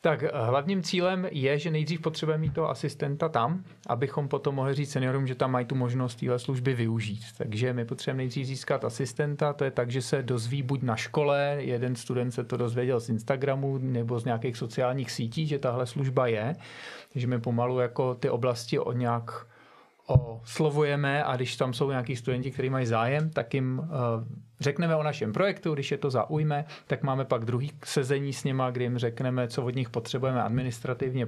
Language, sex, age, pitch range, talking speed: Czech, male, 40-59, 120-140 Hz, 185 wpm